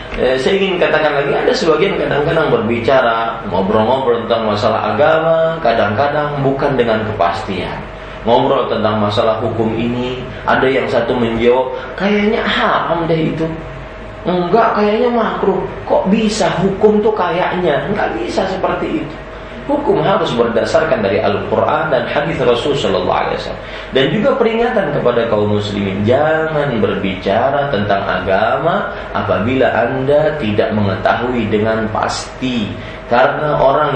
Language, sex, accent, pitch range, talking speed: Indonesian, male, native, 105-150 Hz, 120 wpm